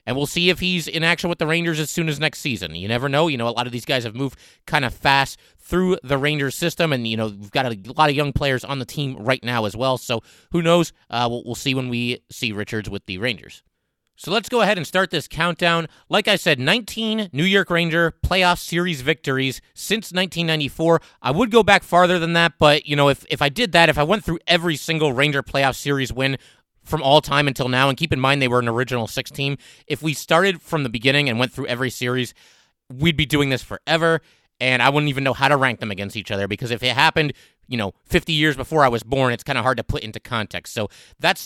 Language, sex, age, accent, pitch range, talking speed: English, male, 30-49, American, 130-165 Hz, 255 wpm